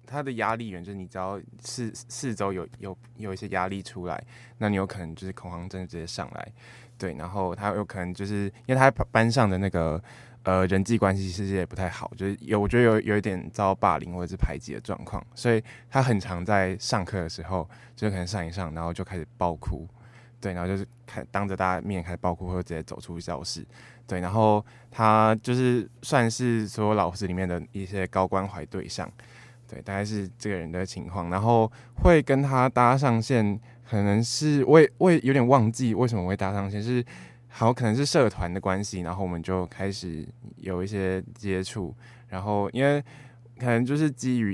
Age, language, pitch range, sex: 20-39, Chinese, 95-120 Hz, male